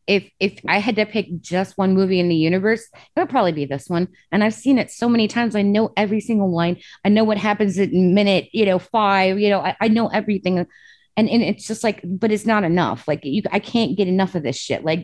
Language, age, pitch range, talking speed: English, 20-39, 185-220 Hz, 255 wpm